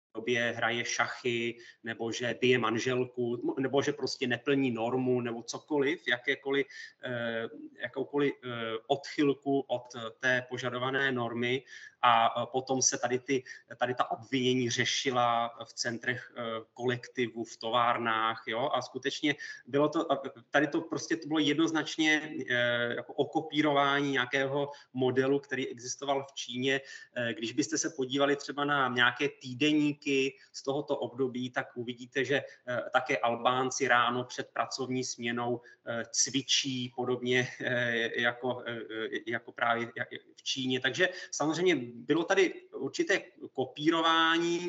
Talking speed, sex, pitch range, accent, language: 115 wpm, male, 120-150 Hz, native, Czech